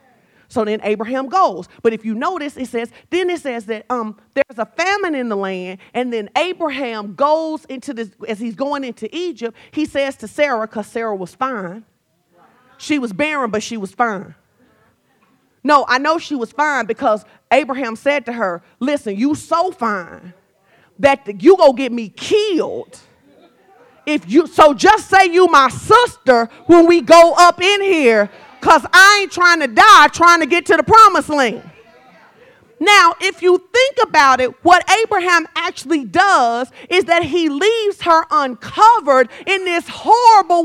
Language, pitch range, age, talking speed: English, 230-345 Hz, 40-59, 170 wpm